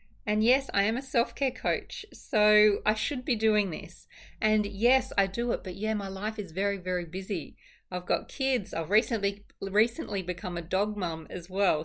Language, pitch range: English, 165-215 Hz